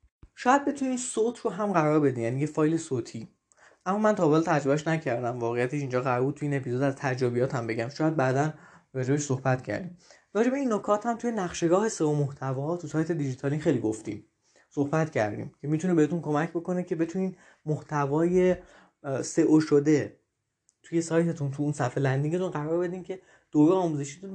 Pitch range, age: 140-190 Hz, 20-39